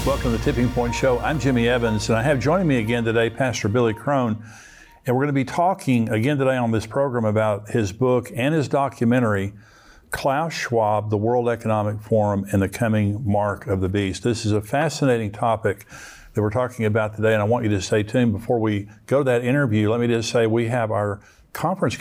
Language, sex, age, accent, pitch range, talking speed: English, male, 50-69, American, 110-125 Hz, 220 wpm